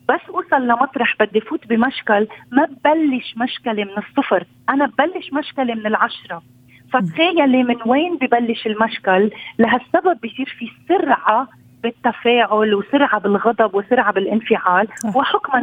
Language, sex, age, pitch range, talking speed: Arabic, female, 40-59, 215-270 Hz, 120 wpm